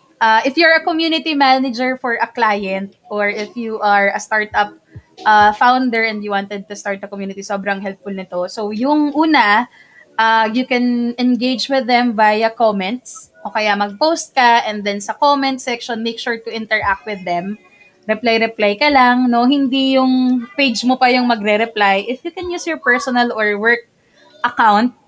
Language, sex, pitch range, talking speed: English, female, 200-255 Hz, 175 wpm